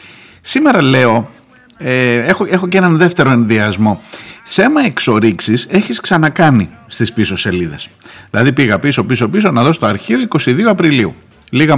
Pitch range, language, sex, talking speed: 105-150 Hz, Greek, male, 145 wpm